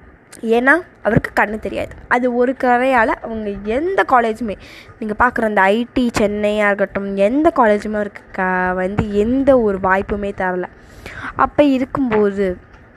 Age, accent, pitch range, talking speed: 20-39, native, 200-265 Hz, 125 wpm